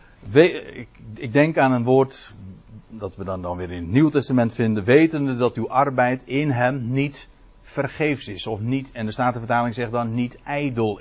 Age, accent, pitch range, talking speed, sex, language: 60-79, Dutch, 110-145 Hz, 190 wpm, male, Dutch